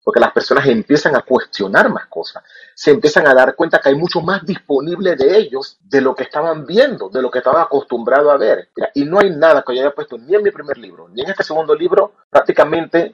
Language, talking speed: English, 235 wpm